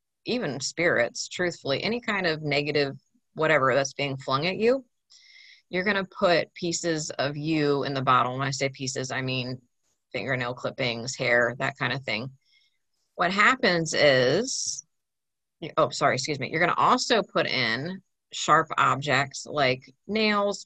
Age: 30-49